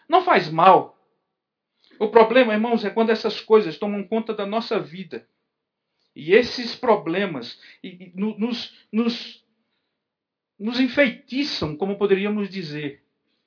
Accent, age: Brazilian, 50-69